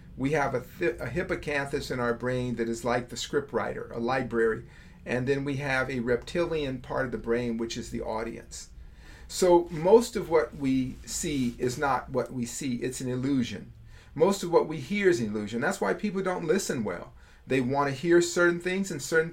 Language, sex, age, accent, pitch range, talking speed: English, male, 50-69, American, 120-155 Hz, 205 wpm